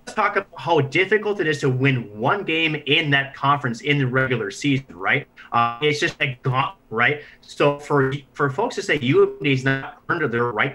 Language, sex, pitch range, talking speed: English, male, 135-155 Hz, 205 wpm